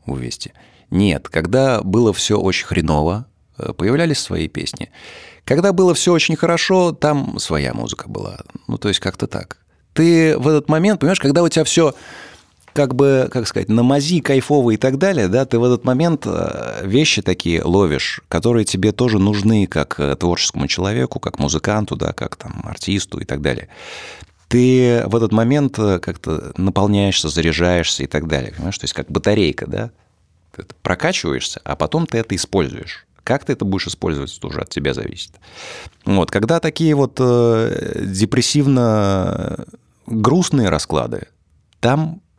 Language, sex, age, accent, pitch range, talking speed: Russian, male, 30-49, native, 90-140 Hz, 150 wpm